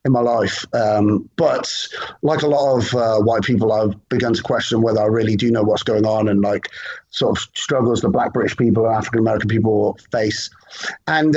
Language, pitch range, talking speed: English, 115-180 Hz, 200 wpm